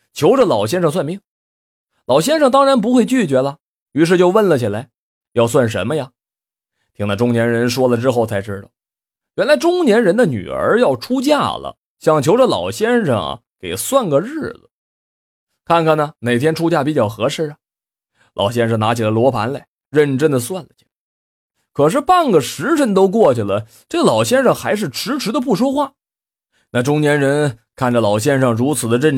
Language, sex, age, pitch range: Chinese, male, 20-39, 115-190 Hz